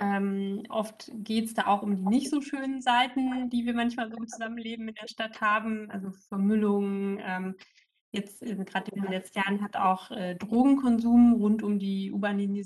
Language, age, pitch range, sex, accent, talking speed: German, 20-39, 195-230 Hz, female, German, 190 wpm